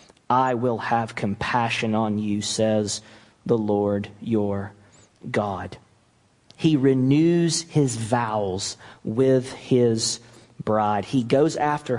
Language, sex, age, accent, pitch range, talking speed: English, male, 40-59, American, 110-160 Hz, 105 wpm